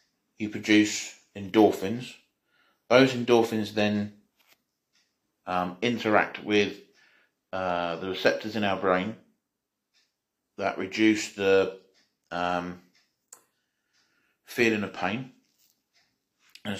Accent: British